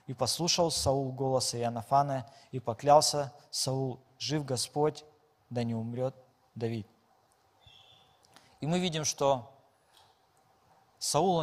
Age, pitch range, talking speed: 20-39, 130-155 Hz, 100 wpm